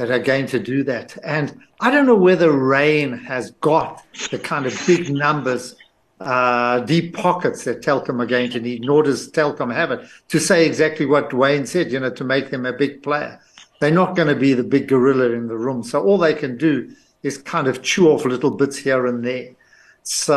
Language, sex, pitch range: English, male, 125-155 Hz